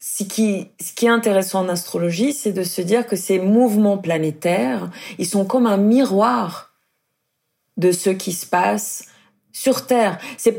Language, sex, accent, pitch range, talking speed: French, female, French, 180-230 Hz, 165 wpm